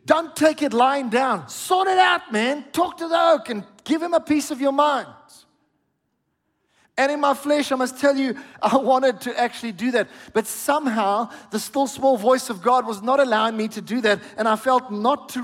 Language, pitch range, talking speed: English, 215-260 Hz, 215 wpm